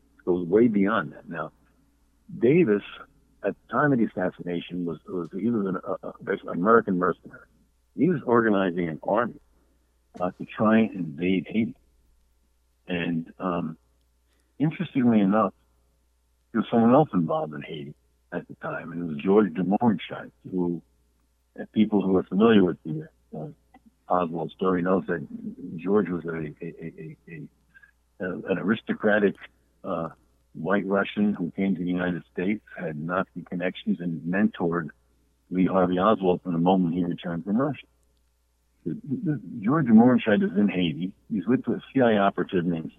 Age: 60-79